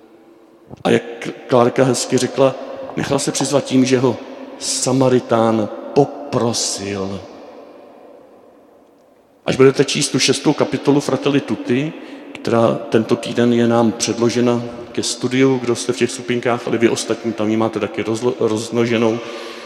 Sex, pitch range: male, 120-145 Hz